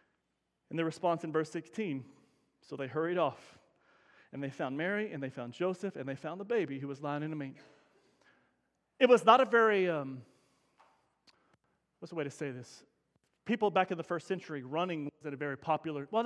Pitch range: 160-220 Hz